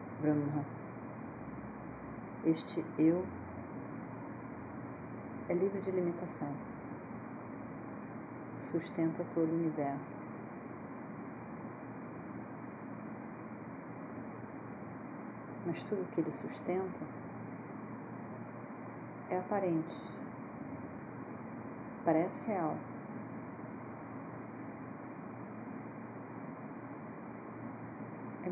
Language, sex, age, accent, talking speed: Portuguese, female, 40-59, Brazilian, 45 wpm